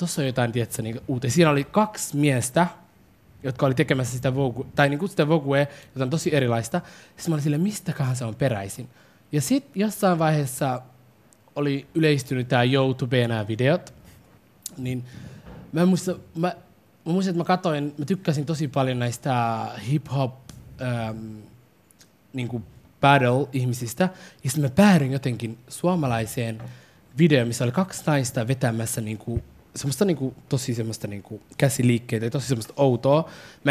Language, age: Finnish, 20-39